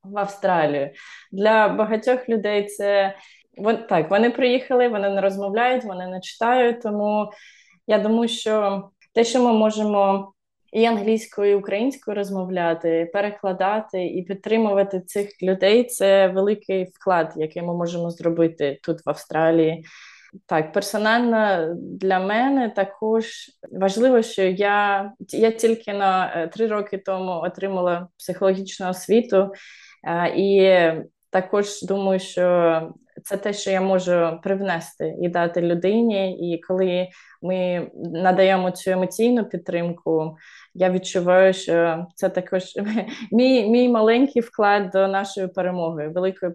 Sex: female